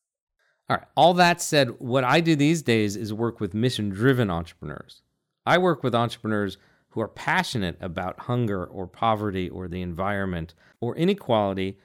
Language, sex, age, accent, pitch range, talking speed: English, male, 40-59, American, 95-140 Hz, 155 wpm